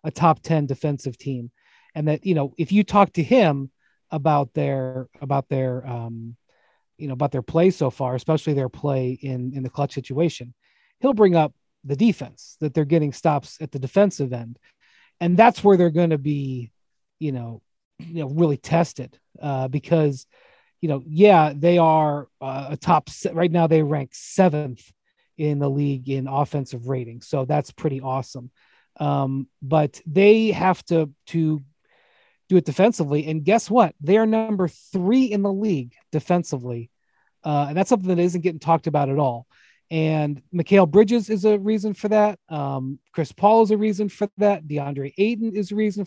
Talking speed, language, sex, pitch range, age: 180 wpm, English, male, 140-190 Hz, 30-49